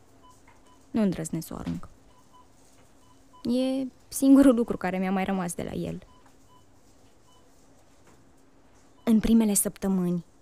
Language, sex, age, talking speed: Romanian, female, 20-39, 90 wpm